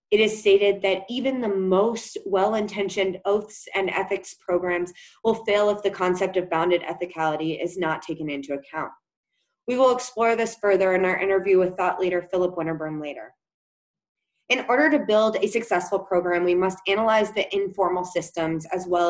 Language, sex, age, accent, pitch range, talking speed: English, female, 20-39, American, 175-215 Hz, 170 wpm